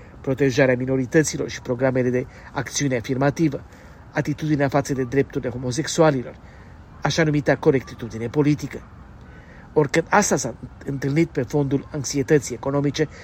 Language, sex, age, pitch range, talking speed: Romanian, male, 40-59, 130-155 Hz, 110 wpm